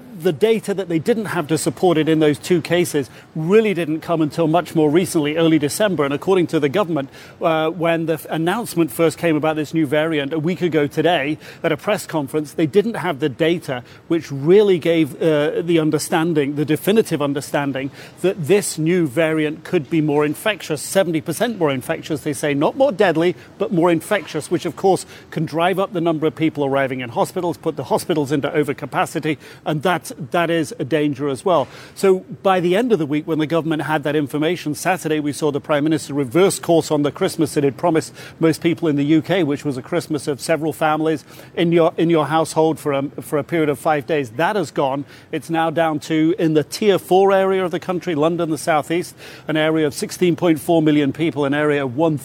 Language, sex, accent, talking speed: English, male, British, 210 wpm